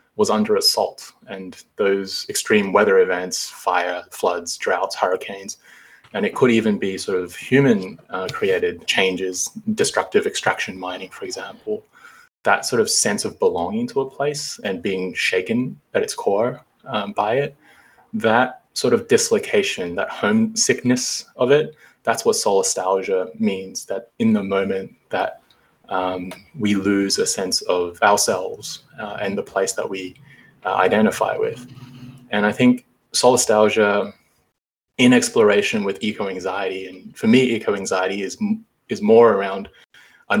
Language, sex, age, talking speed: English, male, 20-39, 145 wpm